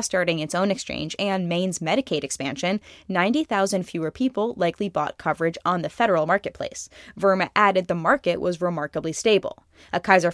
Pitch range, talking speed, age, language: 165-200 Hz, 155 wpm, 20-39, English